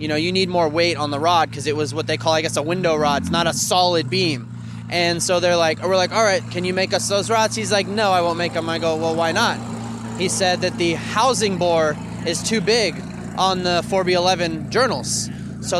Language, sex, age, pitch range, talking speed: English, male, 20-39, 150-185 Hz, 245 wpm